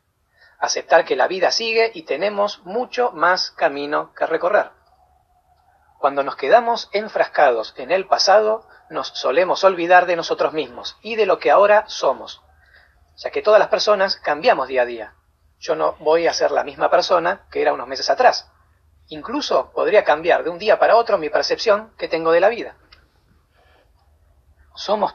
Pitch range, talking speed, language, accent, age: 155-235 Hz, 165 wpm, Spanish, Argentinian, 40-59